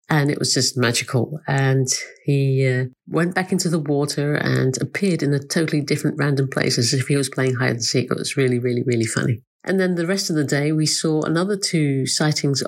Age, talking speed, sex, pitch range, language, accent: 50-69, 220 wpm, female, 145-180 Hz, English, British